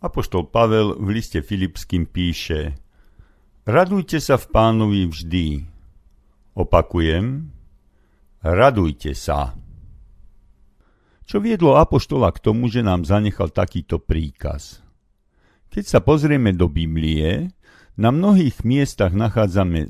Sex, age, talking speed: male, 50-69, 100 wpm